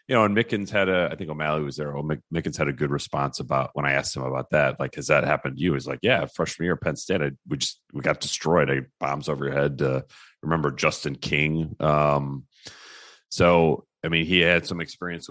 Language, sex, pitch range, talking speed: English, male, 70-90 Hz, 240 wpm